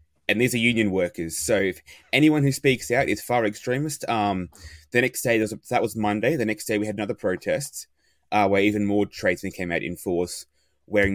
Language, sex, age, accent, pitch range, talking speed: English, male, 20-39, Australian, 90-105 Hz, 210 wpm